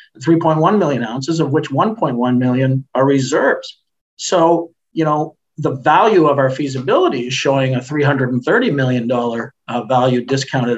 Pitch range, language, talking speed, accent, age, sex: 130-170 Hz, English, 135 wpm, American, 50-69, male